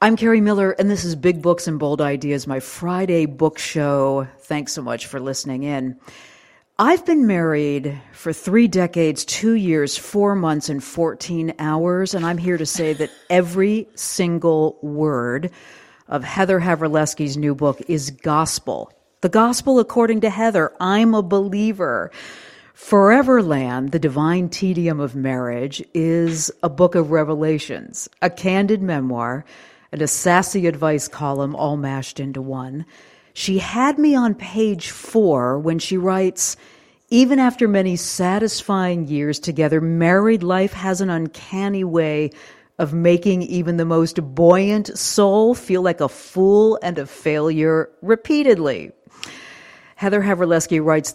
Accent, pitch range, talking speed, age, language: American, 145-190 Hz, 140 wpm, 50-69, English